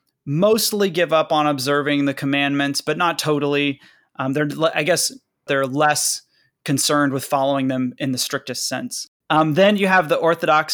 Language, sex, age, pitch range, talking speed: English, male, 20-39, 135-155 Hz, 170 wpm